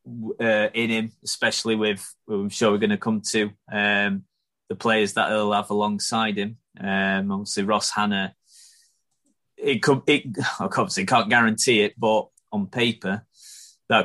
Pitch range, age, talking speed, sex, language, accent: 100-115 Hz, 20-39, 150 wpm, male, English, British